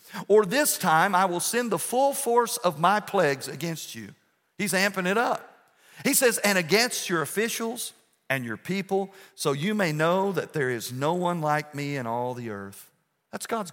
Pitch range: 145-215 Hz